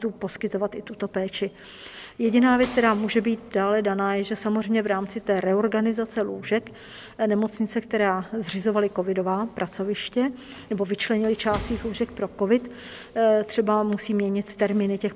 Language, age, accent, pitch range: Czech, 50-69, native, 195-220 Hz